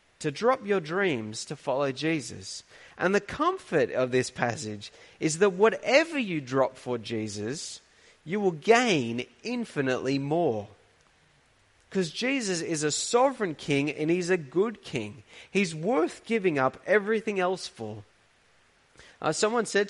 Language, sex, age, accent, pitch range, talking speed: English, male, 30-49, Australian, 125-205 Hz, 140 wpm